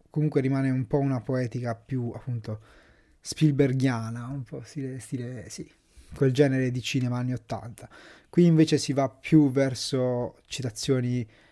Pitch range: 120-150 Hz